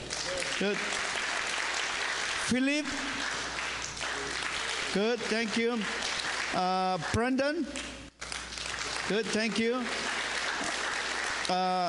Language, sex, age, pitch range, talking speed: English, male, 60-79, 200-260 Hz, 55 wpm